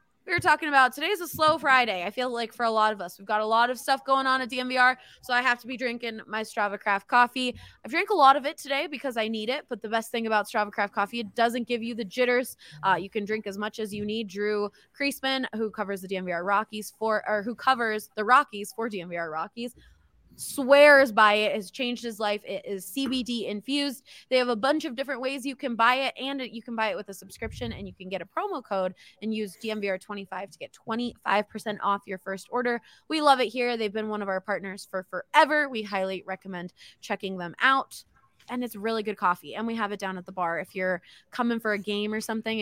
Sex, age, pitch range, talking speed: female, 20-39, 195-255 Hz, 245 wpm